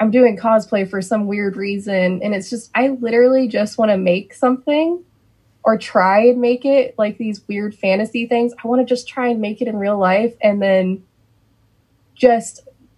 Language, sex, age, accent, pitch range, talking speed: English, female, 20-39, American, 185-230 Hz, 190 wpm